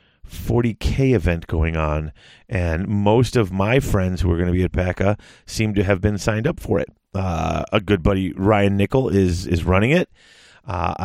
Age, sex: 30-49, male